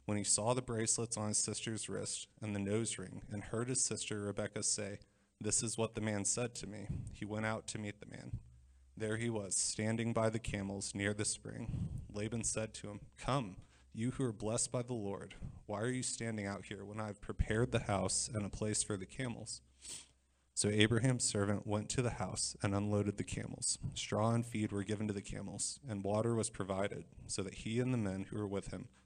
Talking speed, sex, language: 220 wpm, male, English